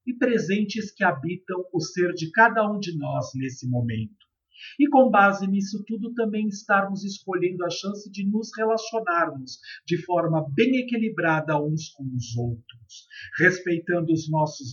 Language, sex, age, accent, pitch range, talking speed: Portuguese, male, 50-69, Brazilian, 155-215 Hz, 150 wpm